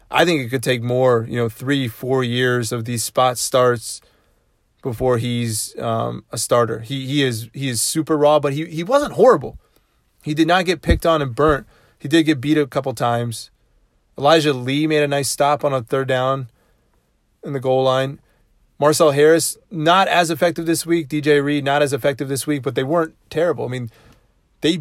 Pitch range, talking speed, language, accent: 125-155 Hz, 200 wpm, English, American